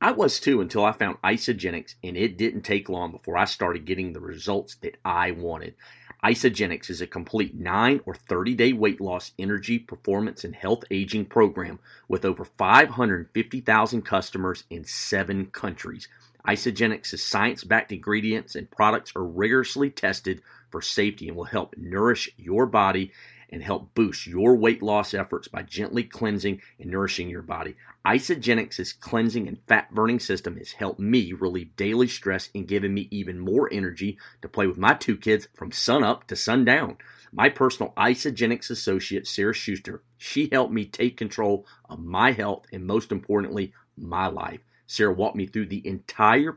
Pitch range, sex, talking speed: 95-115 Hz, male, 160 wpm